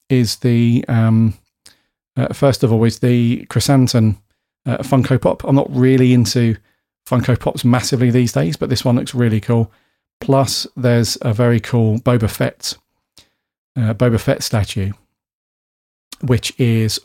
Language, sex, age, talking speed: English, male, 40-59, 145 wpm